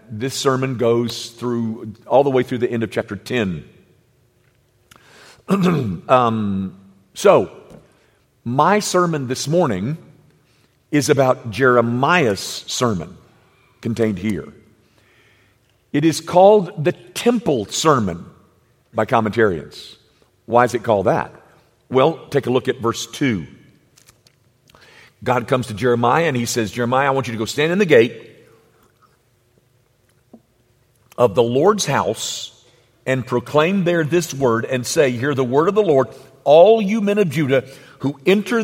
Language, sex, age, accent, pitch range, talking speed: English, male, 50-69, American, 120-170 Hz, 135 wpm